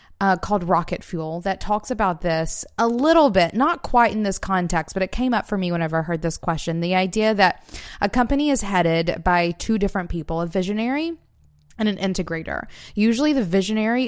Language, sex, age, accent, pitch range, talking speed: English, female, 20-39, American, 170-220 Hz, 195 wpm